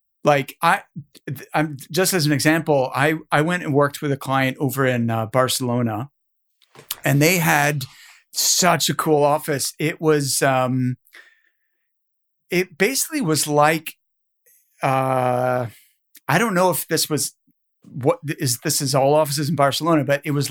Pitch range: 135-165 Hz